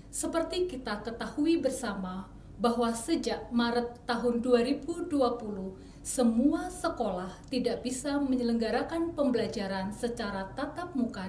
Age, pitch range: 40-59, 210-295 Hz